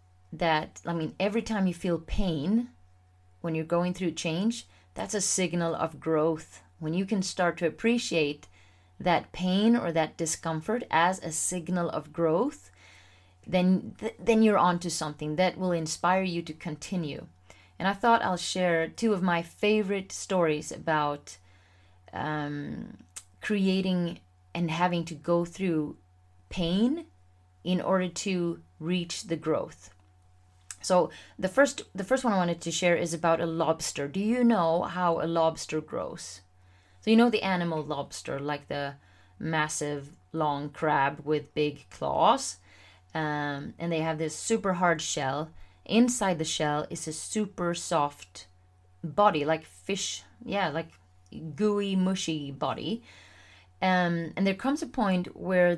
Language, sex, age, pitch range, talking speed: English, female, 30-49, 140-185 Hz, 145 wpm